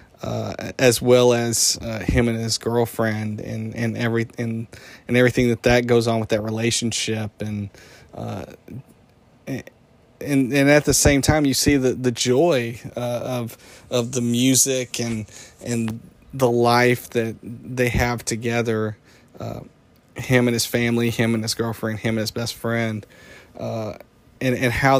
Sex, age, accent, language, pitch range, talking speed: male, 40-59, American, English, 110-125 Hz, 160 wpm